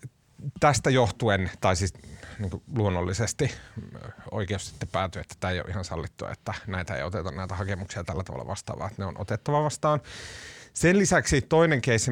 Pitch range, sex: 95-130 Hz, male